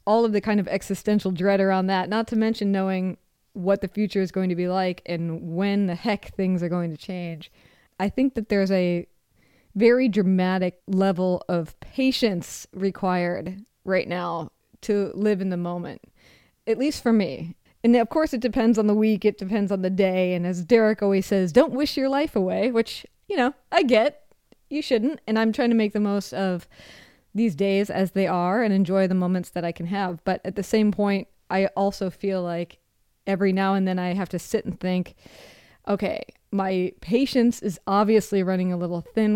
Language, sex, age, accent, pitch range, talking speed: English, female, 20-39, American, 185-220 Hz, 200 wpm